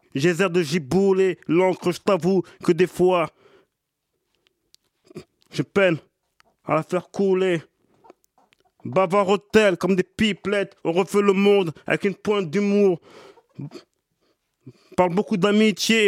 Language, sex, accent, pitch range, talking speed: French, male, French, 185-205 Hz, 115 wpm